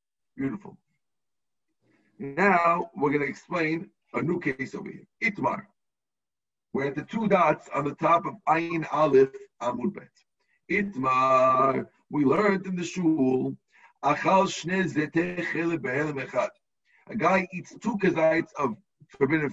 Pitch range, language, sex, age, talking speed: 160-210 Hz, English, male, 60-79, 125 wpm